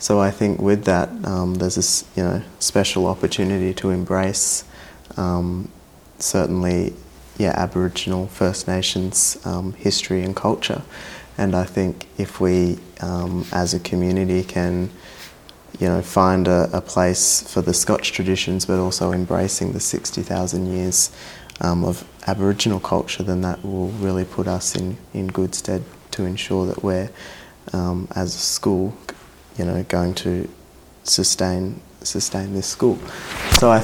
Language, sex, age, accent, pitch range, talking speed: English, male, 20-39, Australian, 90-95 Hz, 145 wpm